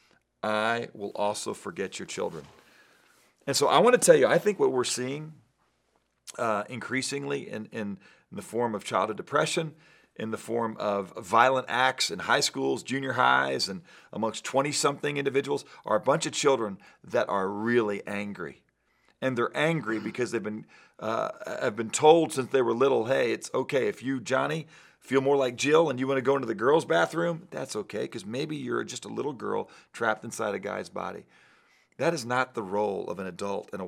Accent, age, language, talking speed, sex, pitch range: American, 40-59, English, 190 wpm, male, 110-150 Hz